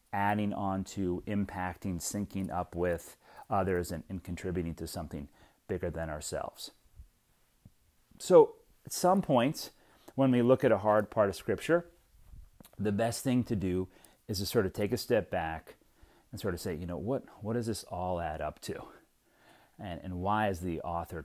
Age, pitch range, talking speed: 30-49, 90-125 Hz, 175 wpm